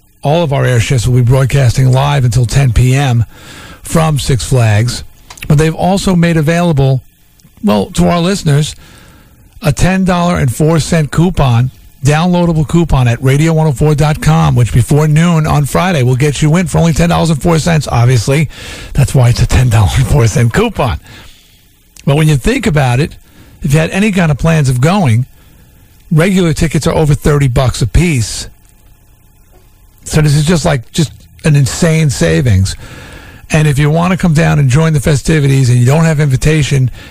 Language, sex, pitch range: English, male, 125-160 Hz